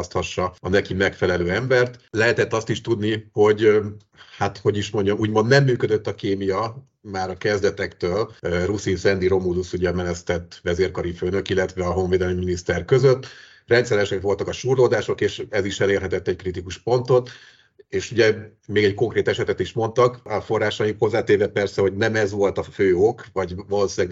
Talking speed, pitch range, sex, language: 160 wpm, 95-120 Hz, male, Hungarian